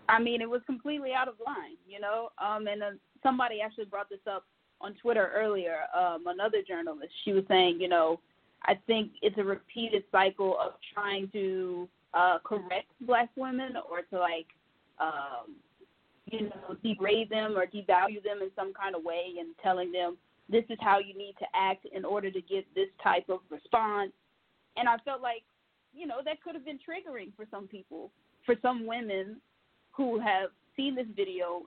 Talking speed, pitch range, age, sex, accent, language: 185 wpm, 190-235 Hz, 20-39, female, American, English